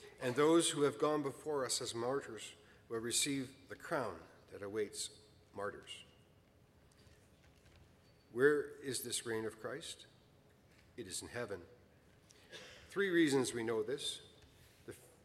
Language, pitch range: English, 105-145 Hz